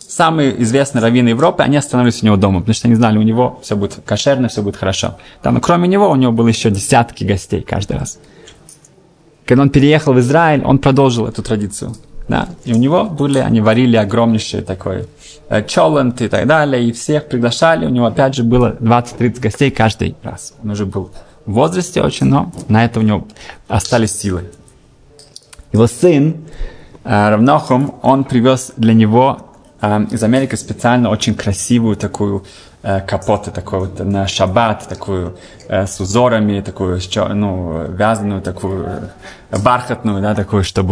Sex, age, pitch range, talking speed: male, 20-39, 100-125 Hz, 165 wpm